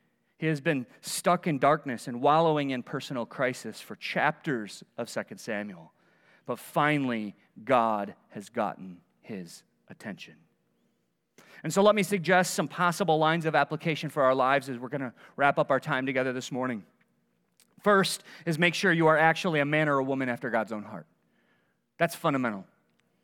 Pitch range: 145-195 Hz